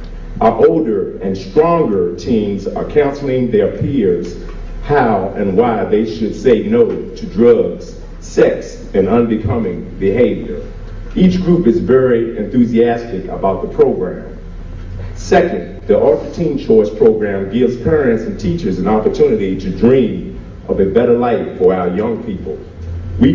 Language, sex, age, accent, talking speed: English, male, 40-59, American, 135 wpm